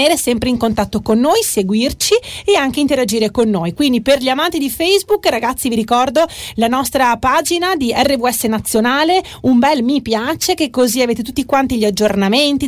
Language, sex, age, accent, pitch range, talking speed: Italian, female, 30-49, native, 220-290 Hz, 175 wpm